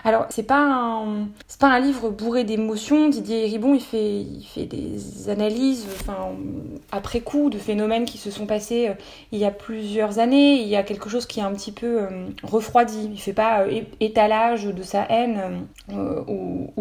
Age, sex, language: 20-39, female, French